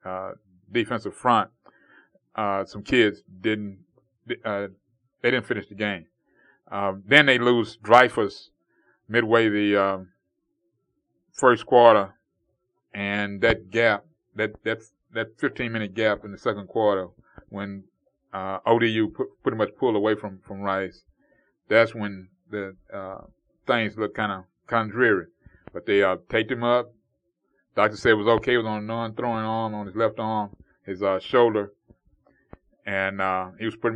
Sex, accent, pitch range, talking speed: male, American, 100-115 Hz, 150 wpm